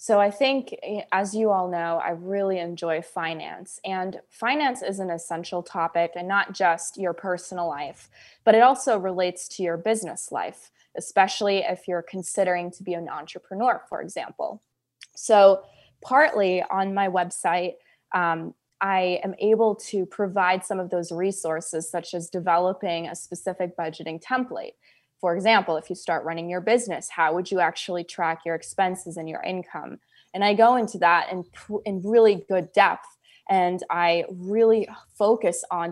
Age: 20-39